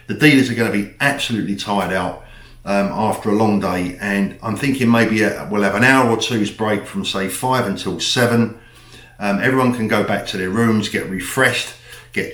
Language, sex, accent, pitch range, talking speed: English, male, British, 95-120 Hz, 200 wpm